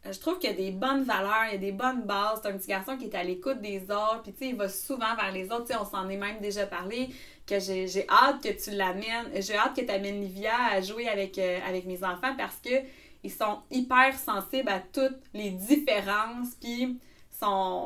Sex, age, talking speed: female, 30-49, 240 wpm